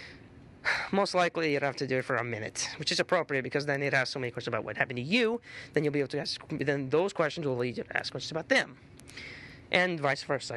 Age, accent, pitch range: 20-39, American, 125-145 Hz